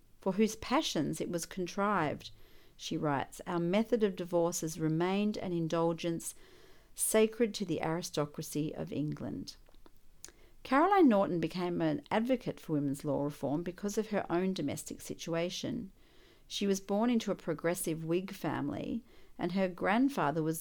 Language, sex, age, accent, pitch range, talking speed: English, female, 50-69, Australian, 160-205 Hz, 140 wpm